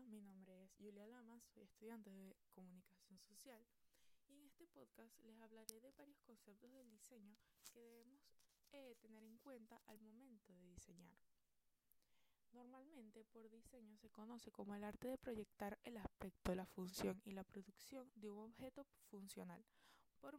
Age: 20-39